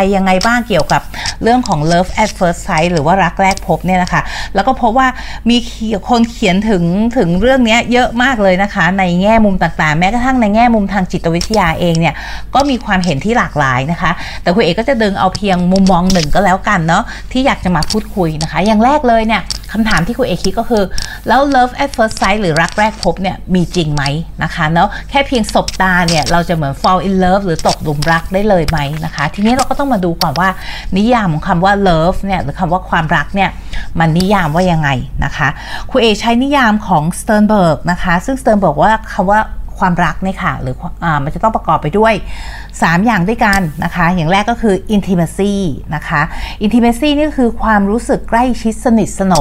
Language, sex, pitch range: Thai, female, 170-225 Hz